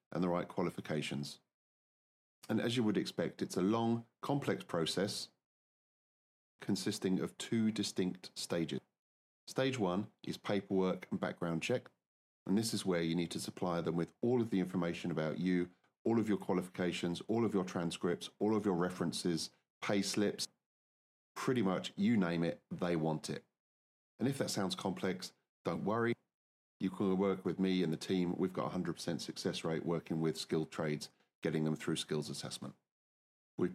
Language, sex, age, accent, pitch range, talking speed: English, male, 30-49, British, 80-100 Hz, 170 wpm